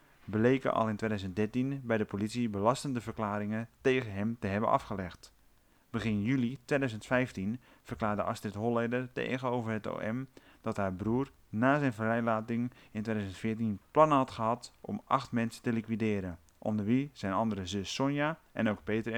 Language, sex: Dutch, male